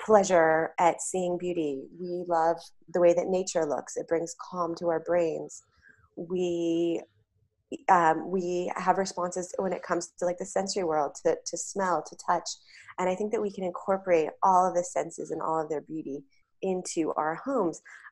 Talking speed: 180 wpm